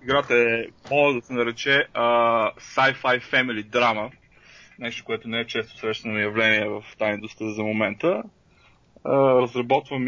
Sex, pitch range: male, 110-130 Hz